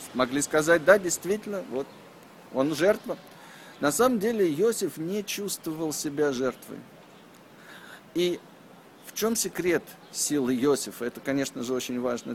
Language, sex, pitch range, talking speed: Russian, male, 140-205 Hz, 125 wpm